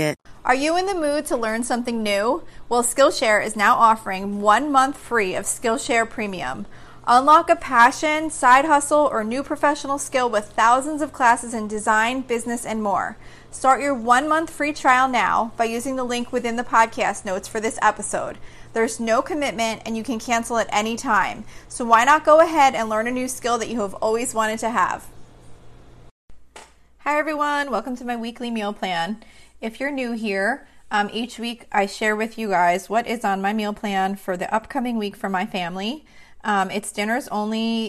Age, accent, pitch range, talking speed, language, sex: 30-49, American, 200-250 Hz, 190 wpm, English, female